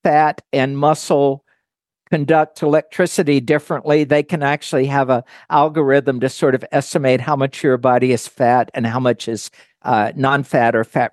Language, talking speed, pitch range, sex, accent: English, 160 wpm, 135-180 Hz, male, American